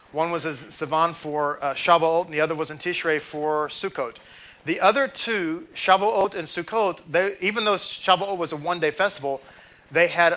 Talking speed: 175 wpm